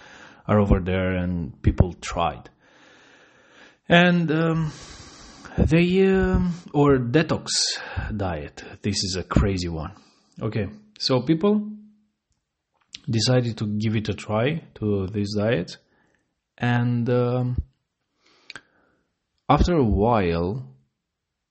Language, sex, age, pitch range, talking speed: English, male, 30-49, 85-110 Hz, 100 wpm